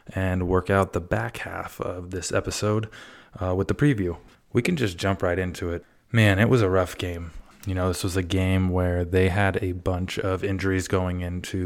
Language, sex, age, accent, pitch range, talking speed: English, male, 20-39, American, 90-100 Hz, 210 wpm